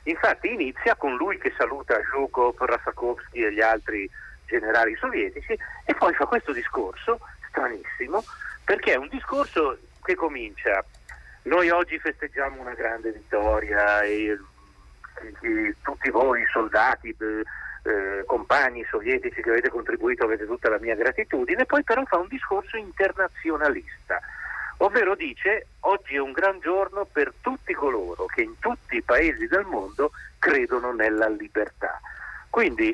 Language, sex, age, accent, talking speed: Italian, male, 50-69, native, 135 wpm